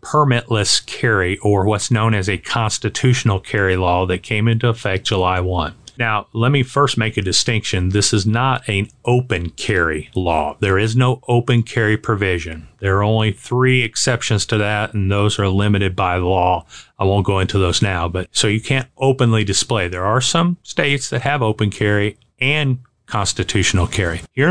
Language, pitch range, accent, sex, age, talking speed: English, 100-125 Hz, American, male, 40-59, 180 wpm